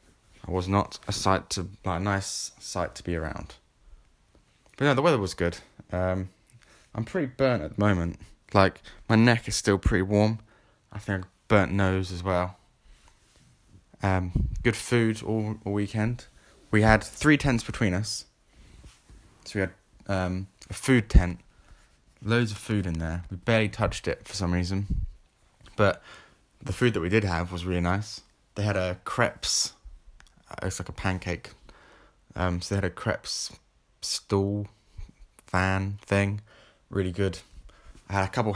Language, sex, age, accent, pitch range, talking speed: English, male, 10-29, British, 90-105 Hz, 160 wpm